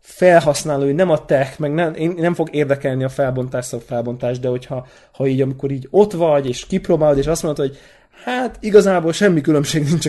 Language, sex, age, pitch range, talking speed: Hungarian, male, 20-39, 135-165 Hz, 200 wpm